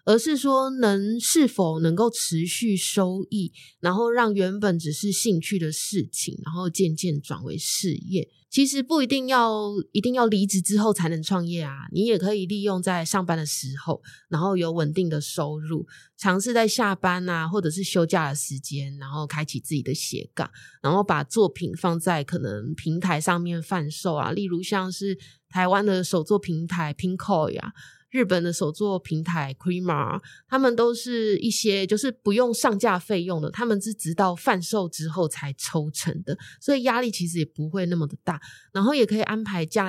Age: 20-39